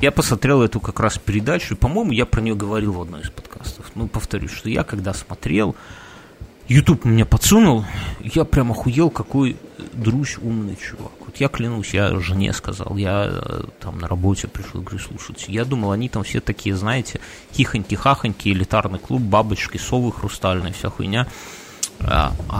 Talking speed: 165 wpm